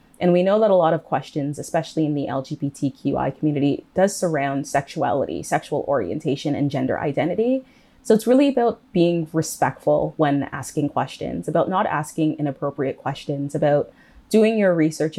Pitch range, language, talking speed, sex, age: 145-180 Hz, English, 155 wpm, female, 20-39